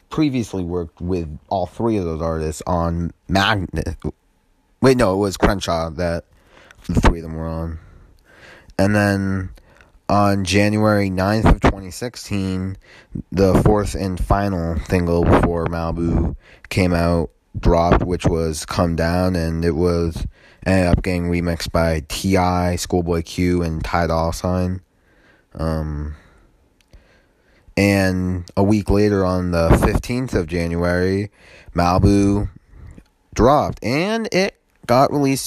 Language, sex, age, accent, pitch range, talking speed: English, male, 30-49, American, 85-105 Hz, 125 wpm